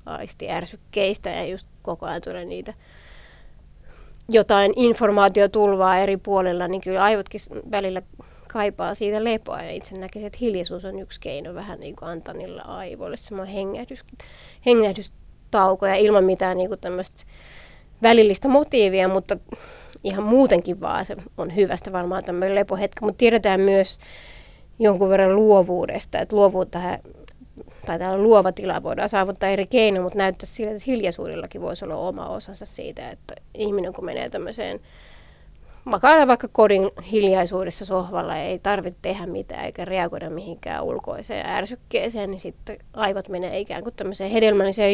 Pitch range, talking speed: 185-215 Hz, 135 wpm